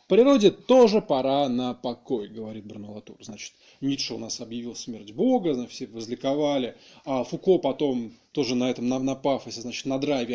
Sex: male